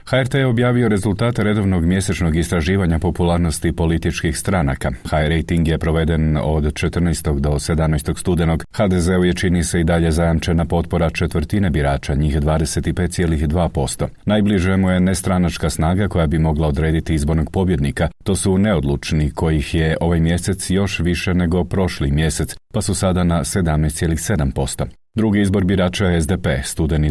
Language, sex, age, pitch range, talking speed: Croatian, male, 40-59, 80-95 Hz, 140 wpm